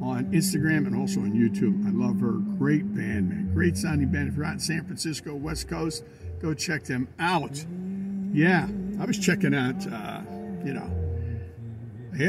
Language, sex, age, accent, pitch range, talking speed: English, male, 50-69, American, 130-190 Hz, 175 wpm